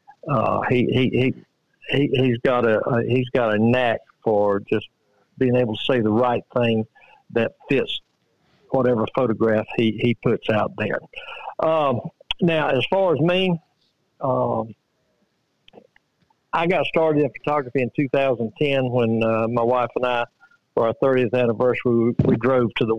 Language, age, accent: English, 60-79, American